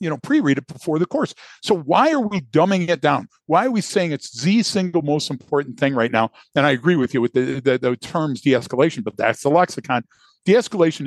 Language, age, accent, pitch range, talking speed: English, 50-69, American, 130-170 Hz, 230 wpm